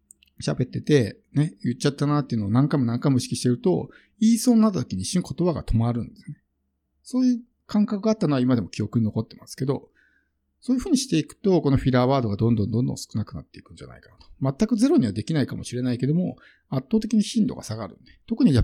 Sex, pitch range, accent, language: male, 110-180 Hz, native, Japanese